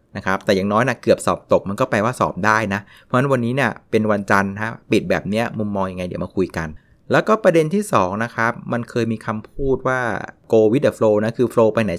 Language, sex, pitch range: Thai, male, 100-130 Hz